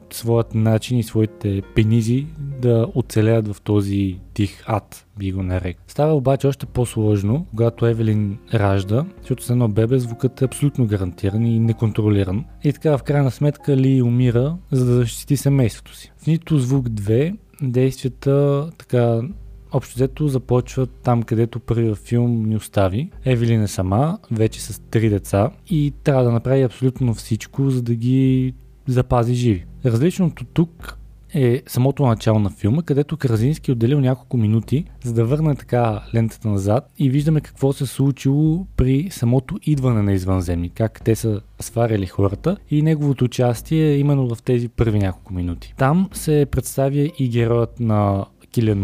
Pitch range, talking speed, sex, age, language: 110-135 Hz, 160 wpm, male, 20-39, Bulgarian